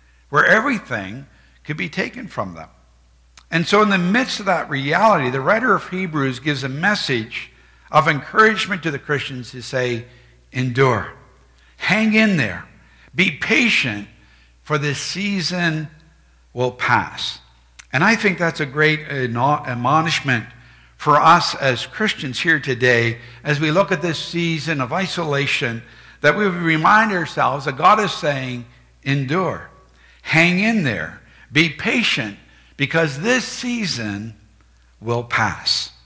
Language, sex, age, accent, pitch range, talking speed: English, male, 60-79, American, 120-180 Hz, 135 wpm